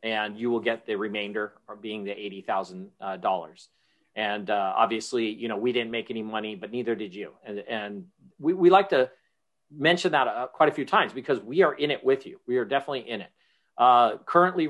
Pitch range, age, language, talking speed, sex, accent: 115-145 Hz, 40-59, English, 210 wpm, male, American